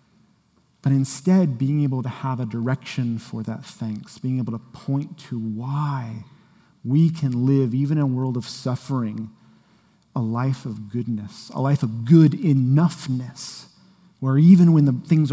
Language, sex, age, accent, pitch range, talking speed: English, male, 40-59, American, 125-160 Hz, 155 wpm